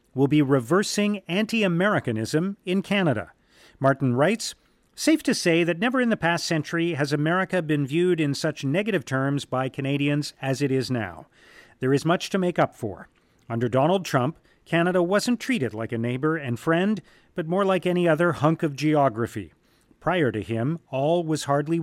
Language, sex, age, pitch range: English, male, 40-59, 130-180 Hz